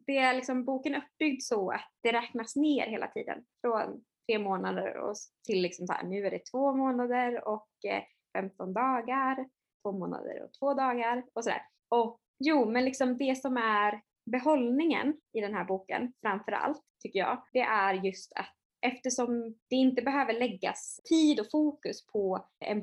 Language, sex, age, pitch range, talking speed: Swedish, female, 20-39, 210-260 Hz, 165 wpm